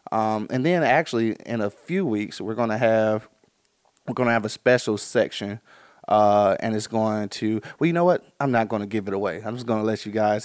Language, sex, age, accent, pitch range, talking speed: English, male, 20-39, American, 105-120 Hz, 240 wpm